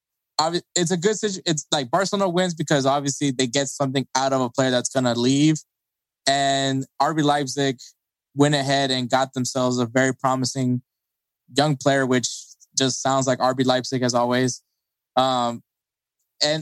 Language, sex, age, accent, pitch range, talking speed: English, male, 20-39, American, 125-150 Hz, 155 wpm